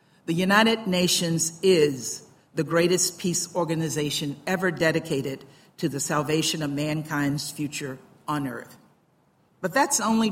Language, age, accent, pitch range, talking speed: English, 50-69, American, 150-190 Hz, 120 wpm